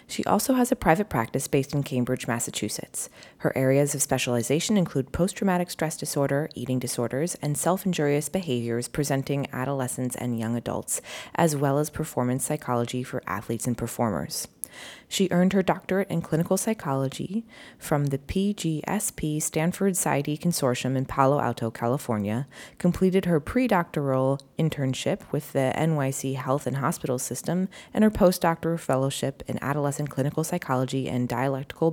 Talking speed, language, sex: 140 wpm, English, female